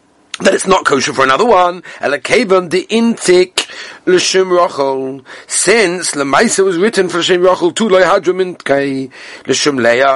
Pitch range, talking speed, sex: 135-225 Hz, 155 wpm, male